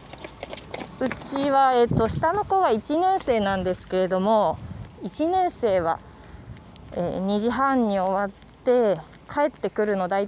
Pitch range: 185-255 Hz